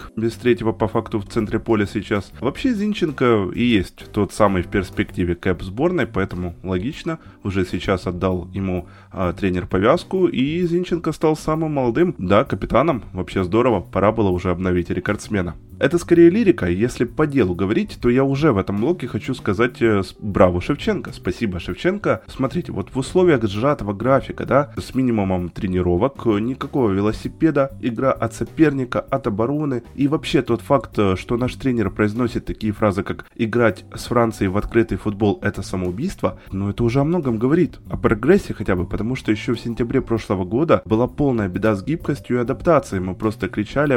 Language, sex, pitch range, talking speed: Ukrainian, male, 95-135 Hz, 170 wpm